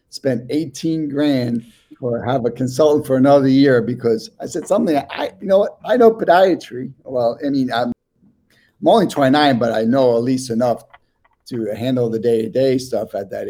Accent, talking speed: American, 180 wpm